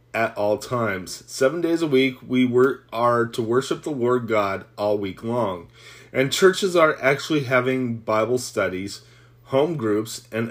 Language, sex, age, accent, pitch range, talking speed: English, male, 30-49, American, 110-130 Hz, 160 wpm